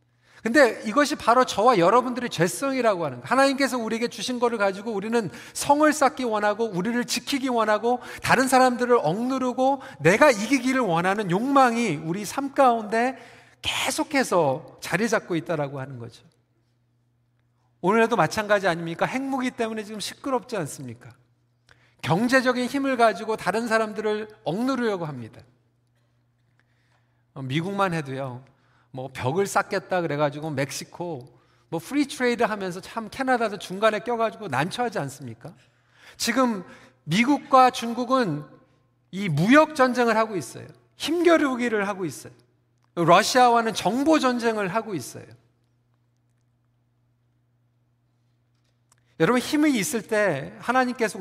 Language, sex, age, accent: Korean, male, 40-59, native